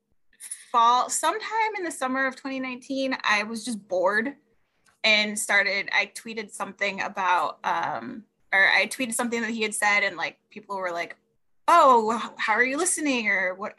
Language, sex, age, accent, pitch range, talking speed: English, female, 20-39, American, 205-260 Hz, 165 wpm